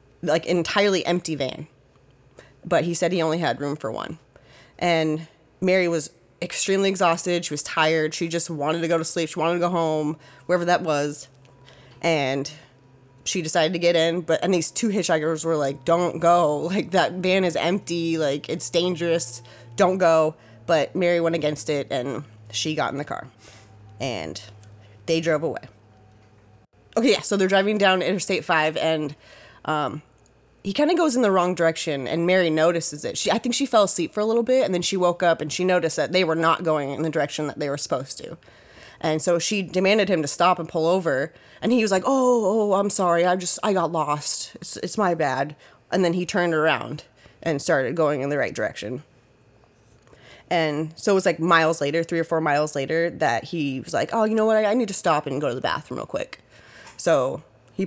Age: 20-39